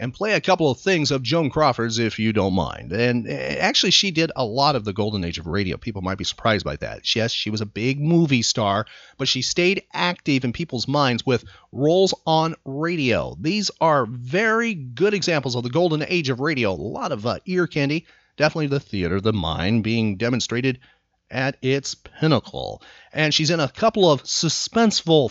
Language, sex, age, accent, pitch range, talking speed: English, male, 30-49, American, 120-165 Hz, 195 wpm